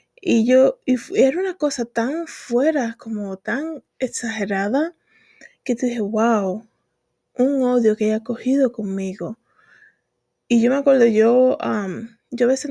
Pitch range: 210-255 Hz